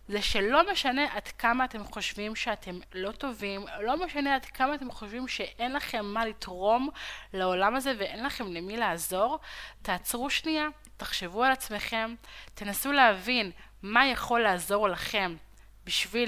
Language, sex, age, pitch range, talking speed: Hebrew, female, 20-39, 200-275 Hz, 140 wpm